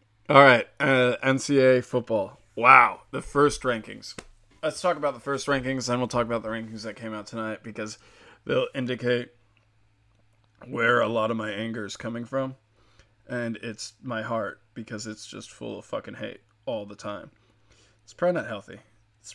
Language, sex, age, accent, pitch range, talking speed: English, male, 20-39, American, 110-135 Hz, 175 wpm